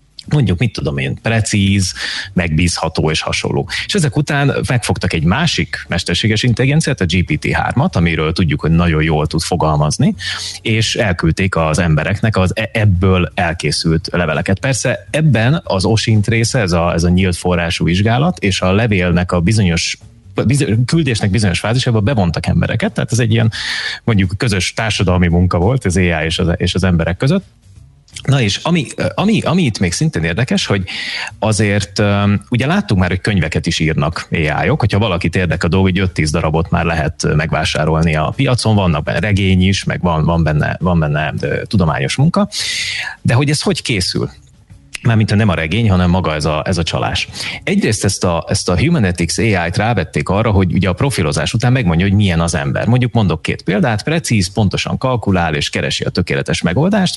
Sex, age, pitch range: male, 30-49, 85-115 Hz